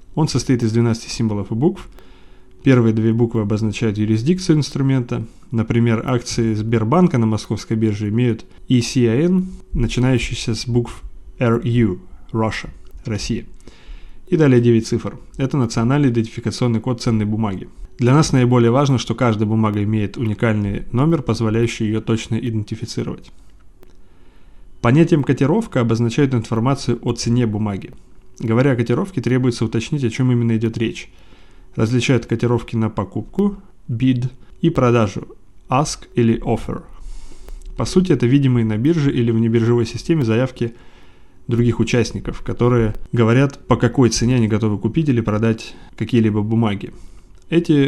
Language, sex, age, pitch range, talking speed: Russian, male, 20-39, 110-125 Hz, 130 wpm